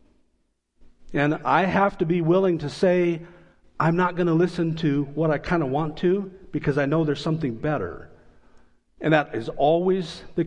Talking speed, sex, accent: 180 wpm, male, American